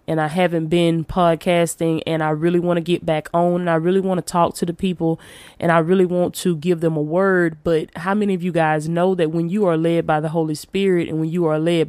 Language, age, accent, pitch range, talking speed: English, 20-39, American, 160-185 Hz, 260 wpm